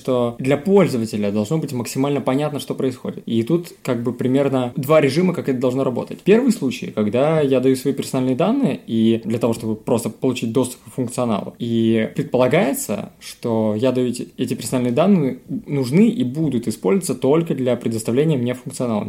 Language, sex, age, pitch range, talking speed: Russian, male, 20-39, 115-140 Hz, 175 wpm